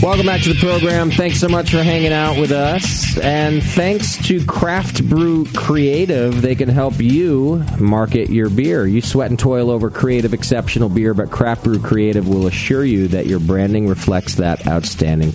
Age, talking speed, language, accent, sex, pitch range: 40-59, 185 wpm, English, American, male, 105-140 Hz